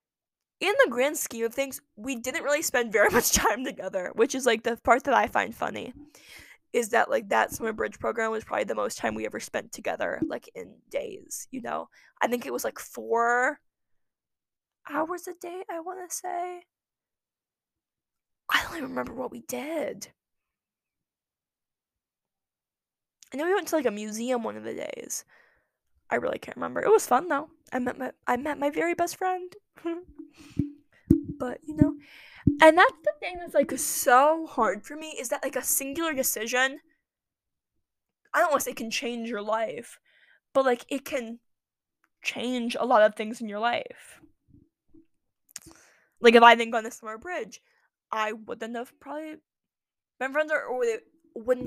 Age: 10-29